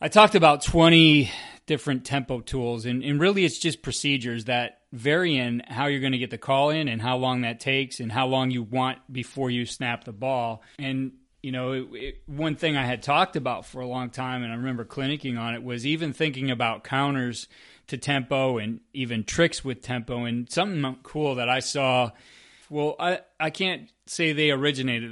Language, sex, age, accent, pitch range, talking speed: English, male, 30-49, American, 120-145 Hz, 200 wpm